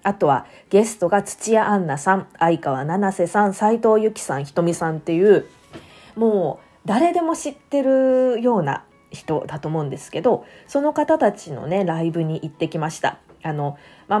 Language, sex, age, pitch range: Japanese, female, 20-39, 160-245 Hz